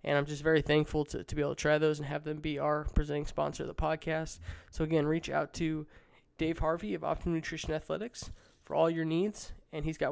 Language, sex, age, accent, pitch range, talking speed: English, male, 20-39, American, 150-165 Hz, 235 wpm